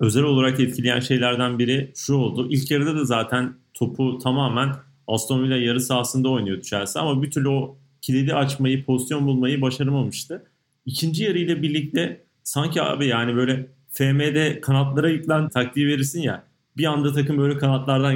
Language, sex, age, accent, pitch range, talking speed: Turkish, male, 40-59, native, 130-165 Hz, 155 wpm